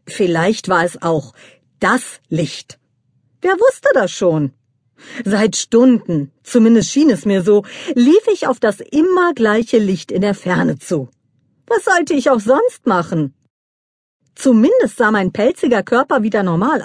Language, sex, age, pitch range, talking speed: German, female, 50-69, 170-260 Hz, 145 wpm